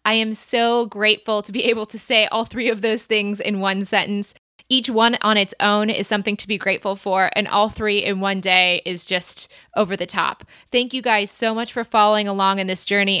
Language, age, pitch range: English, 20-39, 195-225 Hz